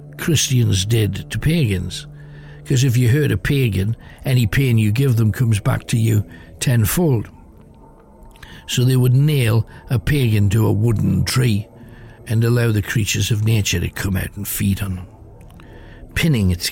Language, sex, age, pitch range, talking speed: English, male, 60-79, 95-130 Hz, 160 wpm